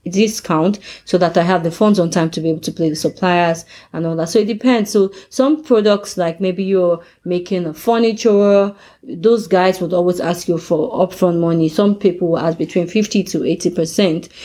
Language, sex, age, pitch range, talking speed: English, female, 30-49, 165-200 Hz, 200 wpm